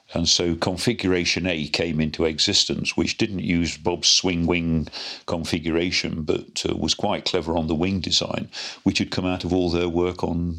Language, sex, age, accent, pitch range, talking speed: English, male, 50-69, British, 80-90 Hz, 180 wpm